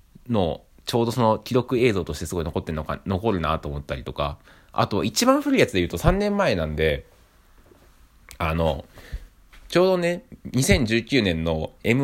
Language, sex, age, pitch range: Japanese, male, 20-39, 80-125 Hz